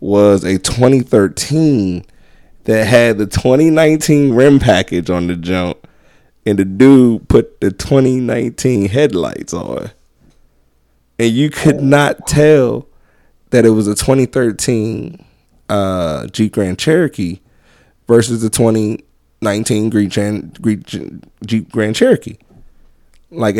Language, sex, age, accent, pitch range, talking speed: English, male, 20-39, American, 95-120 Hz, 105 wpm